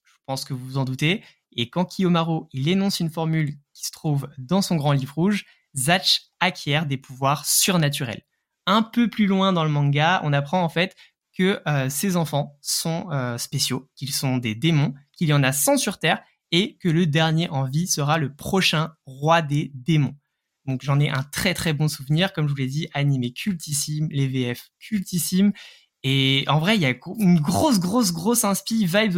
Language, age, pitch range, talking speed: French, 20-39, 140-190 Hz, 200 wpm